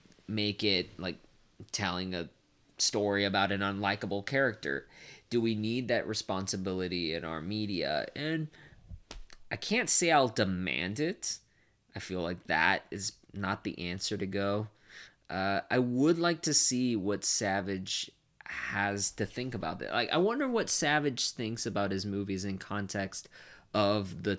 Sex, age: male, 20-39